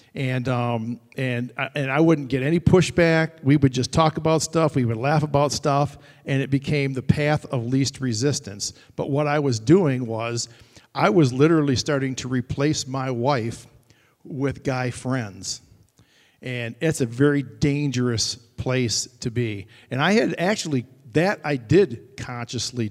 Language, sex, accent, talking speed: English, male, American, 165 wpm